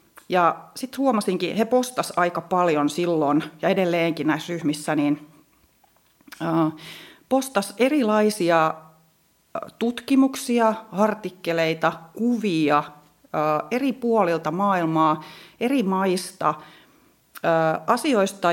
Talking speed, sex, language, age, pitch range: 75 wpm, female, Finnish, 40-59, 160-210 Hz